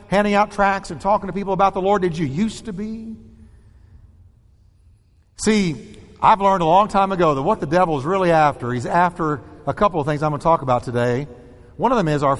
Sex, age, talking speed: male, 50-69, 225 wpm